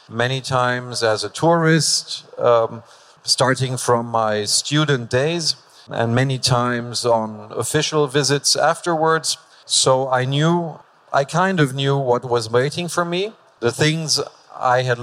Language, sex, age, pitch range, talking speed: Greek, male, 50-69, 120-145 Hz, 135 wpm